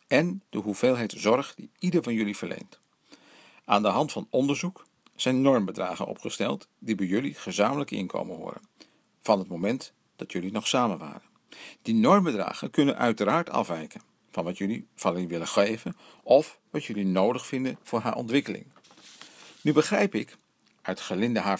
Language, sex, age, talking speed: Dutch, male, 50-69, 160 wpm